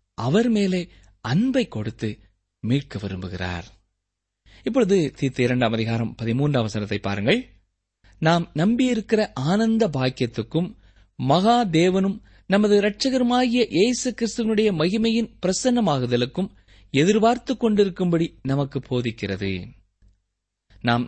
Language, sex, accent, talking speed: Tamil, male, native, 80 wpm